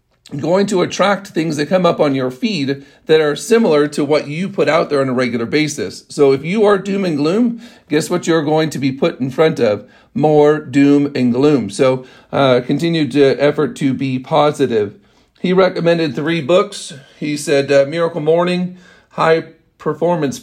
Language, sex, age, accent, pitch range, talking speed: English, male, 50-69, American, 135-165 Hz, 185 wpm